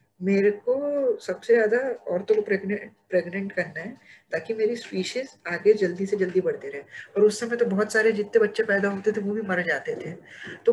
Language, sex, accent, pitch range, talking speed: Hindi, female, native, 195-260 Hz, 195 wpm